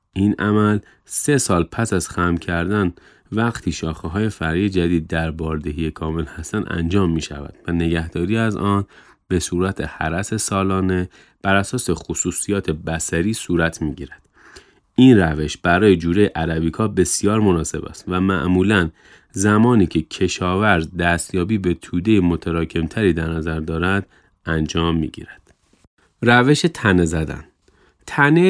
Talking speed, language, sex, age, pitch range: 130 wpm, Persian, male, 30-49, 85-105 Hz